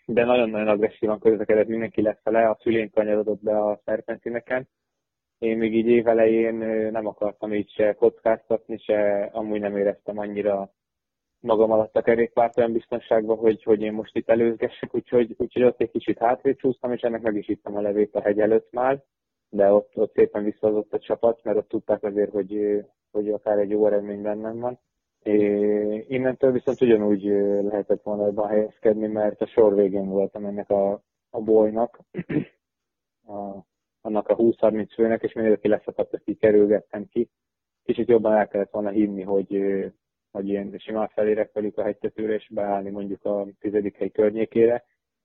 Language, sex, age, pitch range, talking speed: Hungarian, male, 20-39, 105-115 Hz, 165 wpm